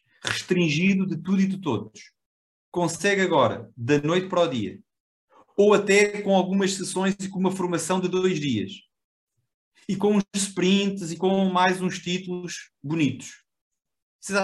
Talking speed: 150 wpm